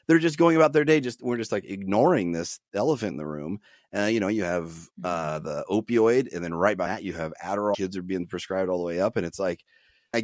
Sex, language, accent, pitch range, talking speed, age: male, English, American, 90-115 Hz, 260 wpm, 30-49